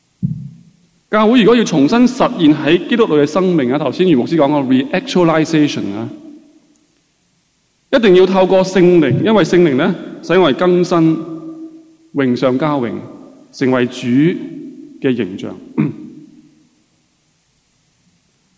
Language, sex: Chinese, male